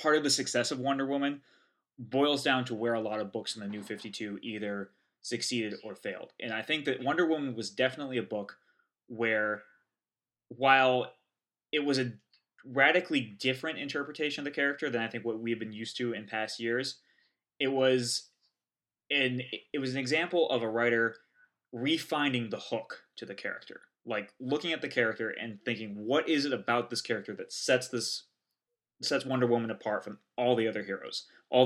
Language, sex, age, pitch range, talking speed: English, male, 20-39, 105-130 Hz, 185 wpm